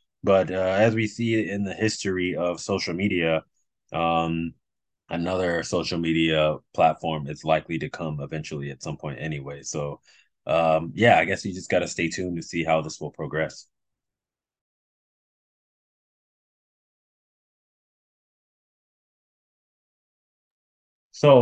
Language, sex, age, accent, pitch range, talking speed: English, male, 20-39, American, 85-105 Hz, 120 wpm